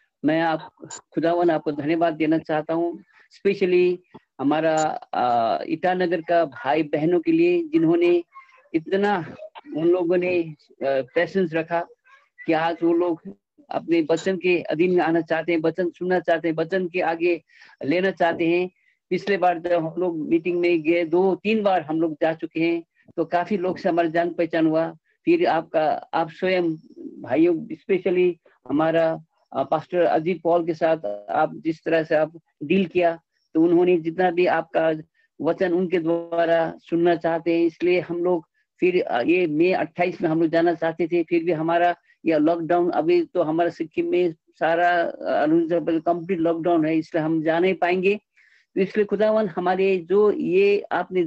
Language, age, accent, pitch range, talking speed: Hindi, 50-69, native, 165-200 Hz, 100 wpm